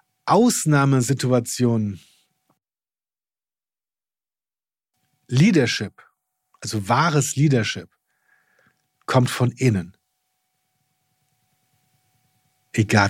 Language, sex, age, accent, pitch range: German, male, 50-69, German, 115-150 Hz